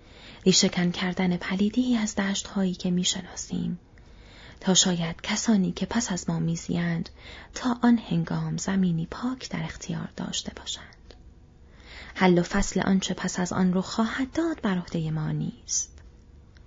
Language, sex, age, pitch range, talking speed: Persian, female, 30-49, 170-230 Hz, 135 wpm